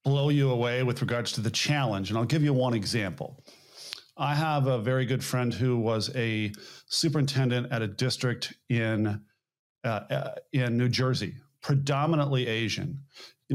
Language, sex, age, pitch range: English, male, 40-59, 120-145 Hz